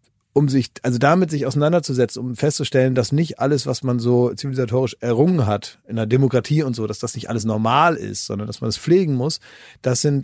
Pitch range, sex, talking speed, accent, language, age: 125-155 Hz, male, 210 wpm, German, German, 30-49